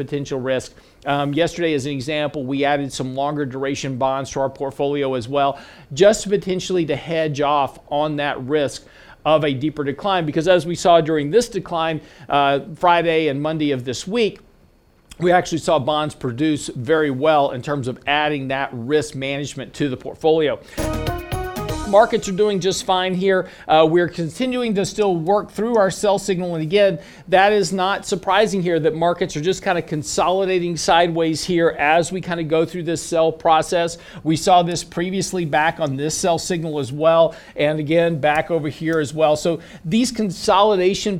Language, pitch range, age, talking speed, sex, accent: English, 150-185 Hz, 40-59, 180 wpm, male, American